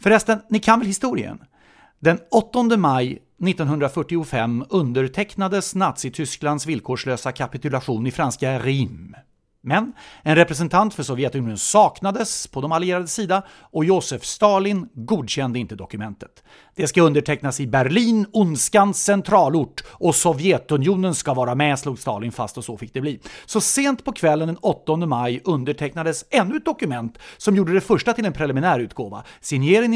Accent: Swedish